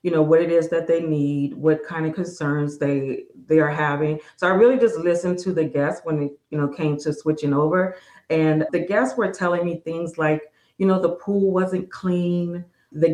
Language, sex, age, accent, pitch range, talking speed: English, female, 40-59, American, 155-200 Hz, 215 wpm